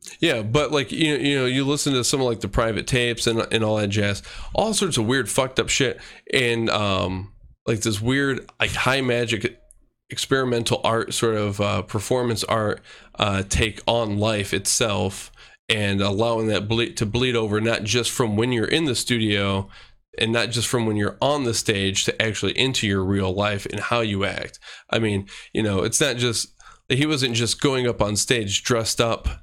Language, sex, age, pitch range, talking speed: English, male, 20-39, 100-120 Hz, 200 wpm